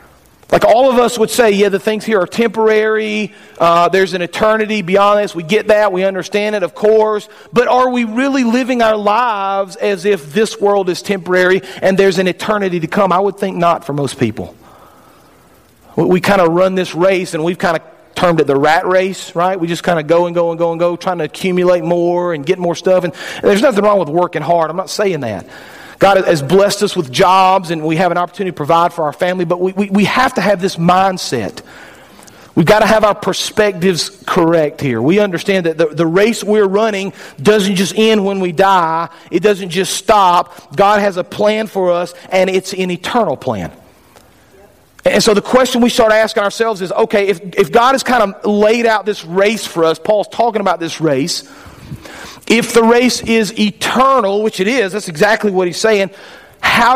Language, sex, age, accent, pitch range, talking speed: English, male, 40-59, American, 175-210 Hz, 215 wpm